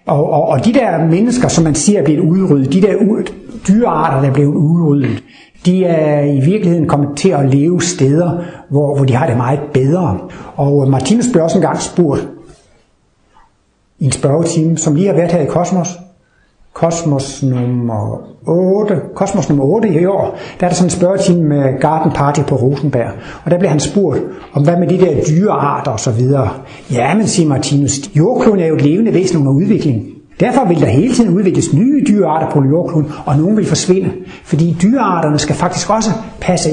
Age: 60-79